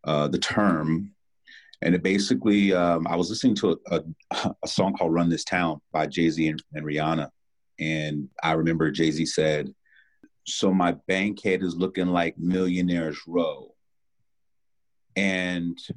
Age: 30-49